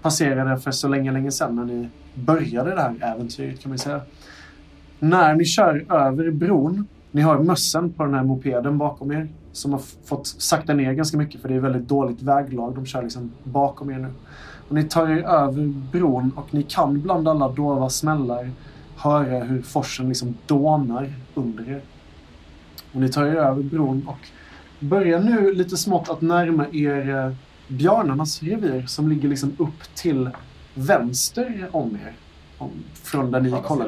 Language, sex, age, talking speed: Swedish, male, 20-39, 170 wpm